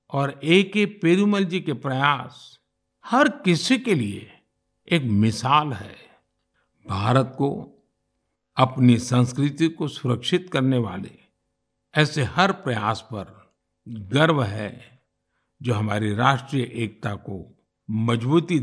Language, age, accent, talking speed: Hindi, 50-69, native, 110 wpm